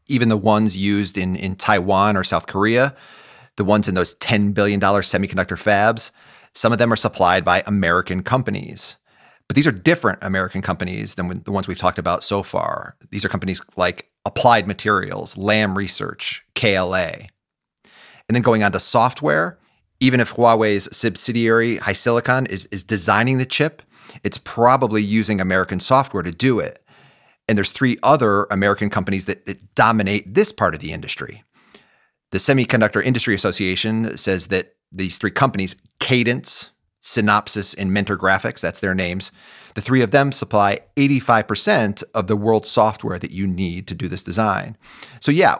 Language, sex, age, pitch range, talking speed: English, male, 30-49, 95-115 Hz, 160 wpm